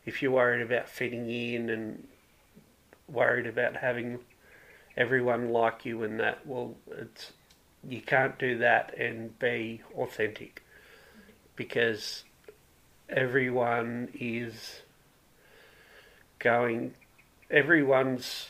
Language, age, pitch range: English, 40-59, 115-125 Hz